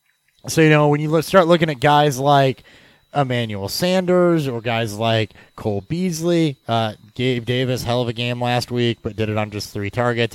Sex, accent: male, American